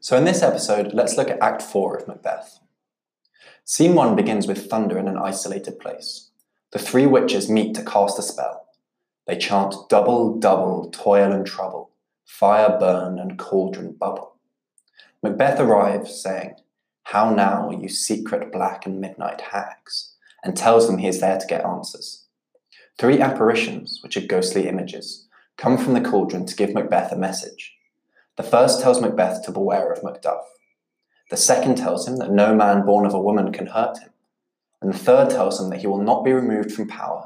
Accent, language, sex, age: British, English, male, 20-39